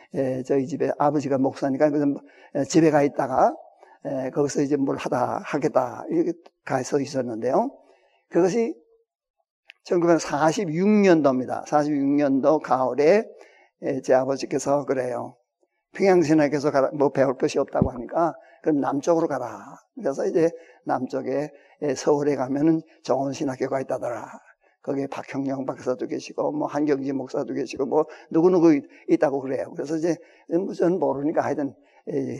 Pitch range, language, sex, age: 135-165 Hz, Korean, male, 50-69